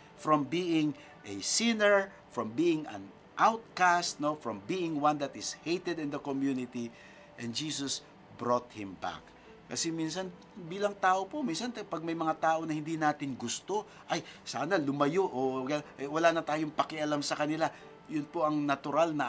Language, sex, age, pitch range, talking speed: Filipino, male, 50-69, 135-190 Hz, 165 wpm